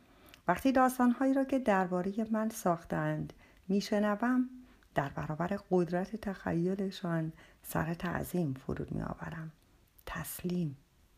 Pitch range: 165-235 Hz